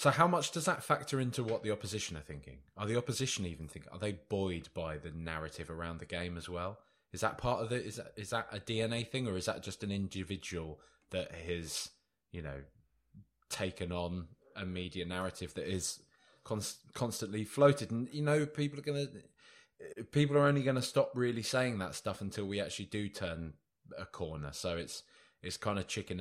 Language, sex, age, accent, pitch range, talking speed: English, male, 20-39, British, 85-110 Hz, 200 wpm